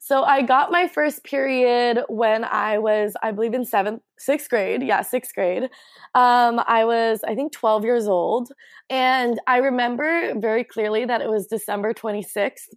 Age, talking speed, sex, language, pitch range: 20-39, 170 wpm, female, English, 210-250 Hz